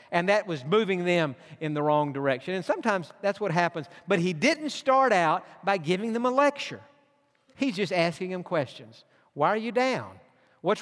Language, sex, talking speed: English, male, 190 wpm